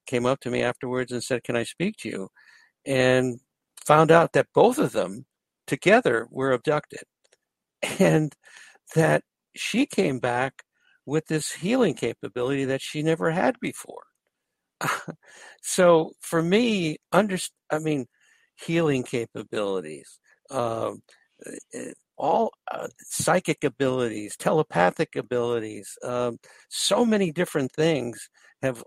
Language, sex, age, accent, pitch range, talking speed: English, male, 60-79, American, 125-160 Hz, 120 wpm